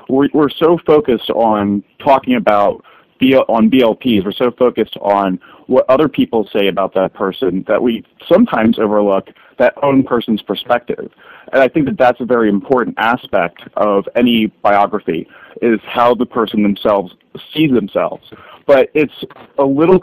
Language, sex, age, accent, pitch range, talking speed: English, male, 30-49, American, 105-130 Hz, 145 wpm